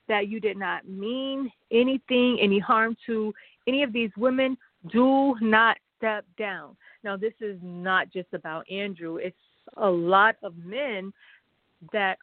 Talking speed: 145 wpm